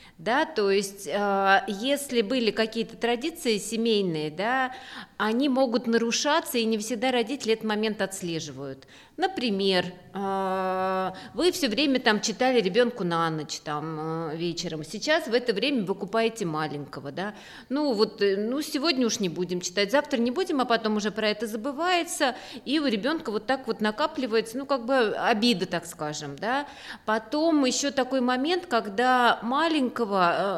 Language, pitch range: Russian, 215-275 Hz